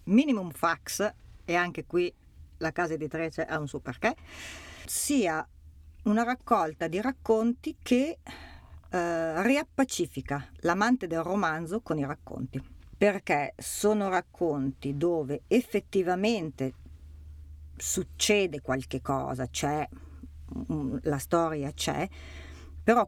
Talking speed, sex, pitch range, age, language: 105 wpm, female, 140-195 Hz, 50-69, Italian